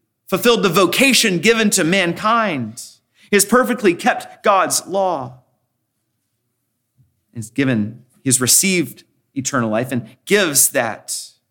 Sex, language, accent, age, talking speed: male, English, American, 30-49, 115 wpm